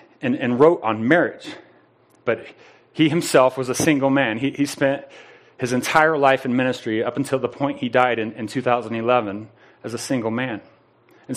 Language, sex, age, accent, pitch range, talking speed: English, male, 30-49, American, 125-155 Hz, 180 wpm